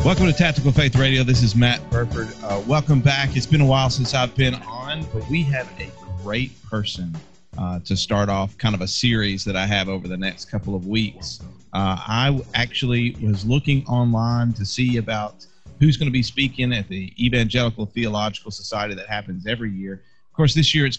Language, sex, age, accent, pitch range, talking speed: English, male, 40-59, American, 100-125 Hz, 205 wpm